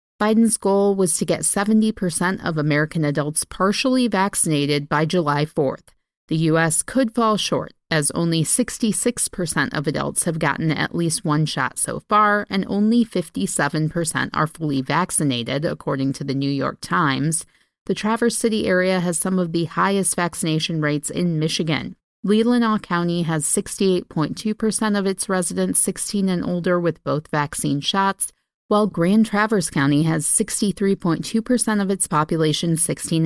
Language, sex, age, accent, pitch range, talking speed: English, female, 30-49, American, 155-200 Hz, 145 wpm